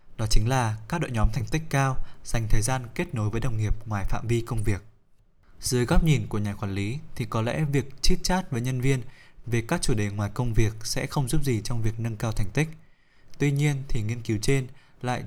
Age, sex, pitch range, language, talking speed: 20-39, male, 110-135 Hz, Vietnamese, 245 wpm